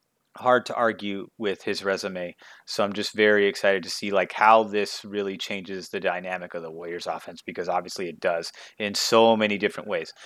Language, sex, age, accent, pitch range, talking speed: English, male, 30-49, American, 100-115 Hz, 195 wpm